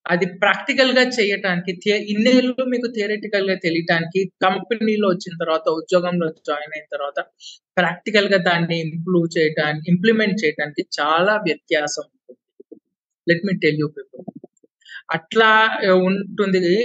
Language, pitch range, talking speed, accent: Telugu, 165-210 Hz, 95 wpm, native